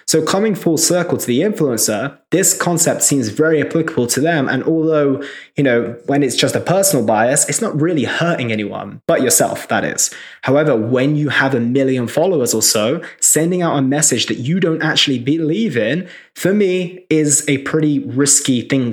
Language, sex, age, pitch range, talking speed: English, male, 20-39, 130-160 Hz, 185 wpm